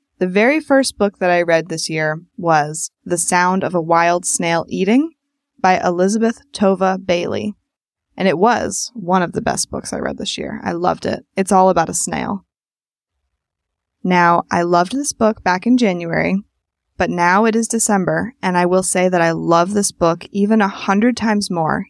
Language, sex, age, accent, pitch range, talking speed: English, female, 20-39, American, 180-220 Hz, 185 wpm